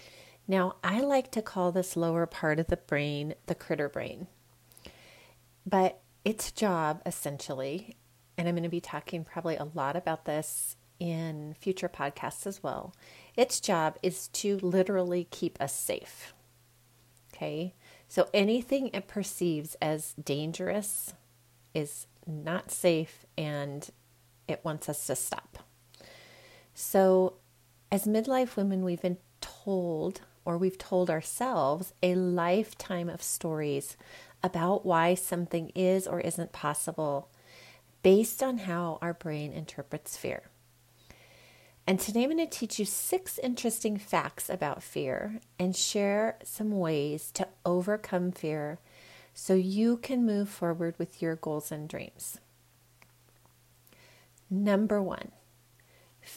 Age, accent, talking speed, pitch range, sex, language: 40-59, American, 125 wpm, 150-195 Hz, female, English